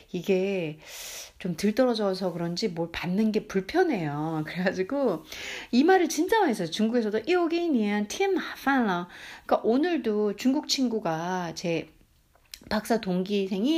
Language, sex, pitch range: Korean, female, 170-250 Hz